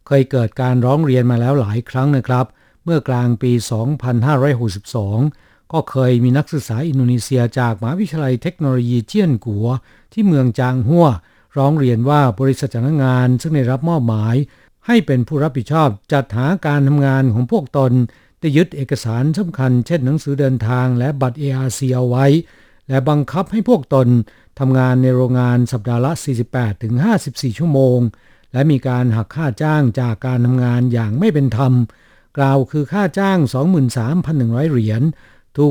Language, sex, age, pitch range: Thai, male, 60-79, 125-145 Hz